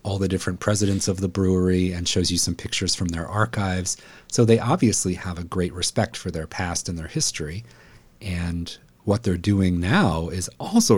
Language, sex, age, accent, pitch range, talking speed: English, male, 40-59, American, 85-100 Hz, 190 wpm